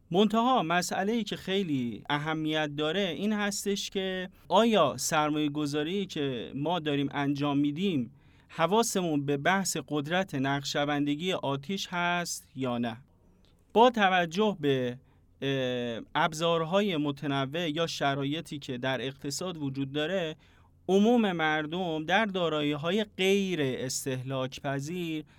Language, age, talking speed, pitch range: Persian, 30-49, 105 wpm, 145-185 Hz